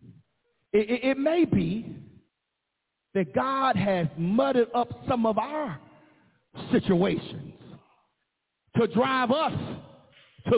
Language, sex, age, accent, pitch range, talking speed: English, male, 40-59, American, 205-275 Hz, 95 wpm